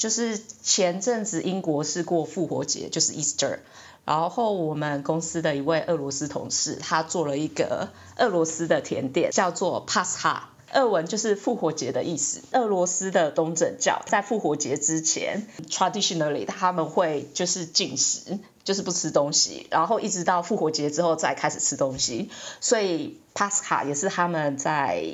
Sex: female